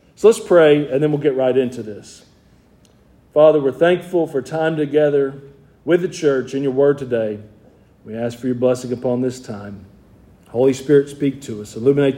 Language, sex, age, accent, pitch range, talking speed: English, male, 40-59, American, 130-165 Hz, 175 wpm